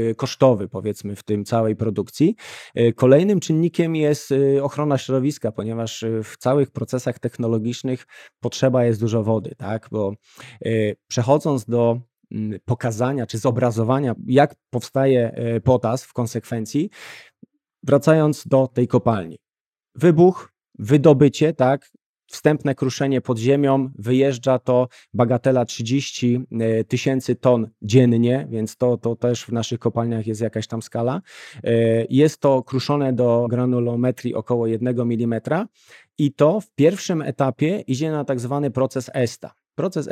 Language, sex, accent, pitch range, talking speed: Polish, male, native, 115-140 Hz, 120 wpm